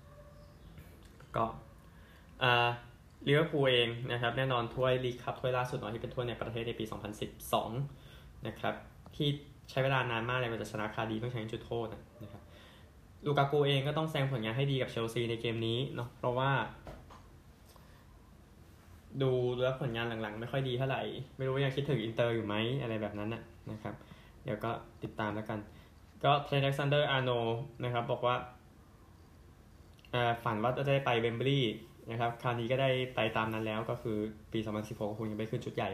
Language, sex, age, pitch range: Thai, male, 10-29, 110-130 Hz